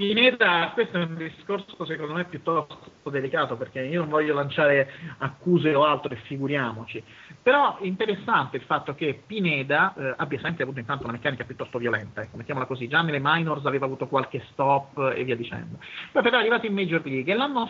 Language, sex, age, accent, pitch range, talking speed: Italian, male, 30-49, native, 130-180 Hz, 190 wpm